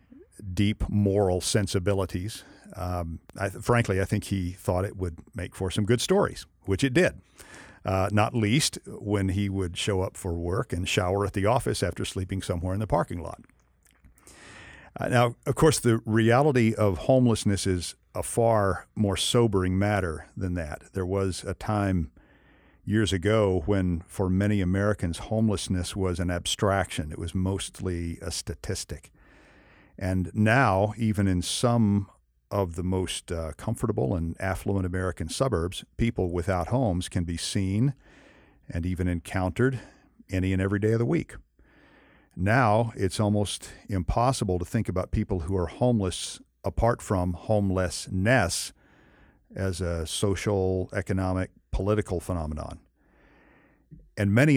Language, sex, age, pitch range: English, male, 50-69, 90-110 Hz